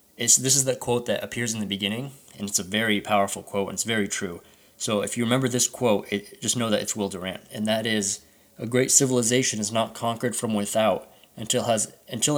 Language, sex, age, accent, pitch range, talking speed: English, male, 20-39, American, 100-125 Hz, 230 wpm